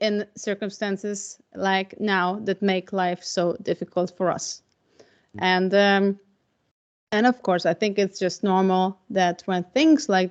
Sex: female